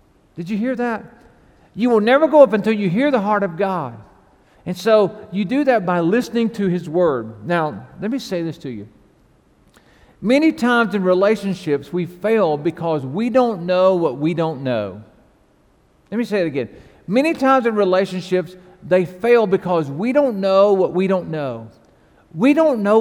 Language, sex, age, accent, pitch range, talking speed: English, male, 50-69, American, 185-255 Hz, 180 wpm